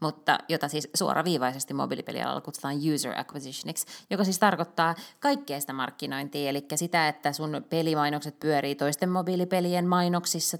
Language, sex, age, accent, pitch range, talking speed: Finnish, female, 20-39, native, 145-185 Hz, 130 wpm